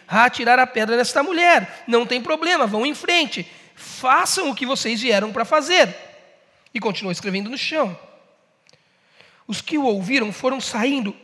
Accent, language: Brazilian, Portuguese